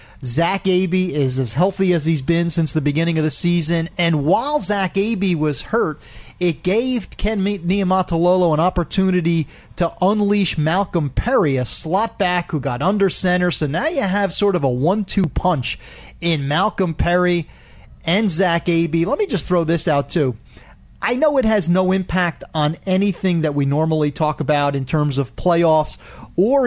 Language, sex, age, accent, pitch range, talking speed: English, male, 40-59, American, 155-195 Hz, 175 wpm